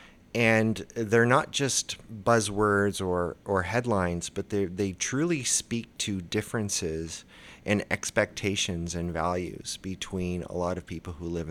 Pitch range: 85-105 Hz